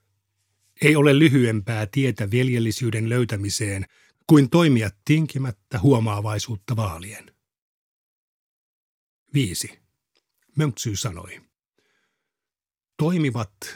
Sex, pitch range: male, 105-140 Hz